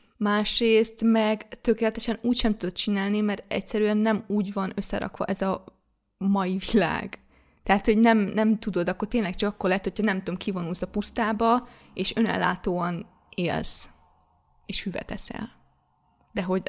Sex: female